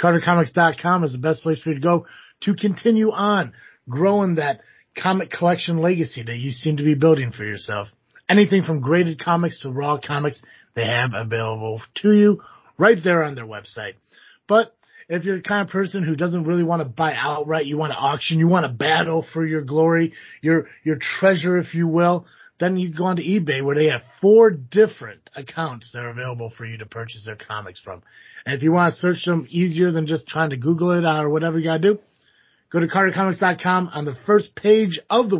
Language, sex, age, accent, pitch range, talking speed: English, male, 30-49, American, 130-175 Hz, 210 wpm